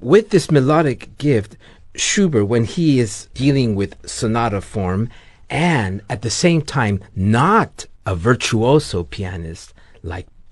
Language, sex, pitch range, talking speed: English, male, 95-145 Hz, 125 wpm